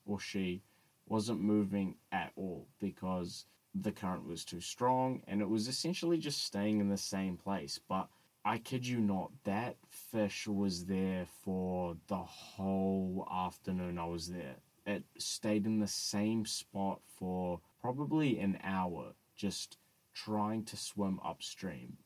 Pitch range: 95-115 Hz